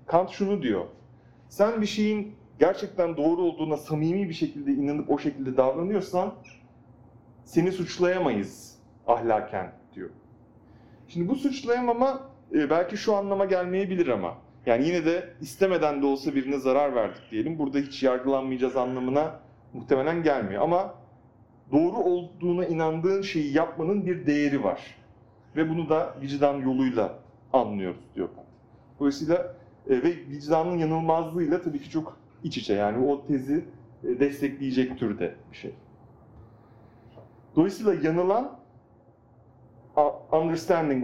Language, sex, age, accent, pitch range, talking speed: Turkish, male, 40-59, native, 120-170 Hz, 115 wpm